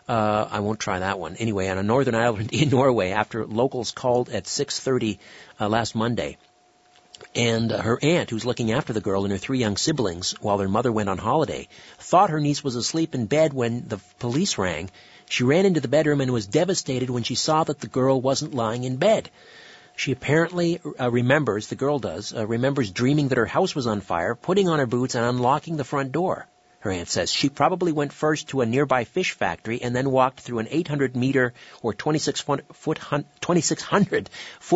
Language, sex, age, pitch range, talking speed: English, male, 50-69, 110-145 Hz, 195 wpm